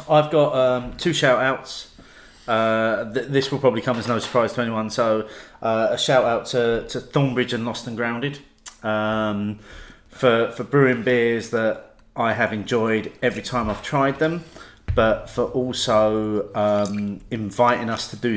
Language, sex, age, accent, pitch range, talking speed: English, male, 30-49, British, 105-130 Hz, 165 wpm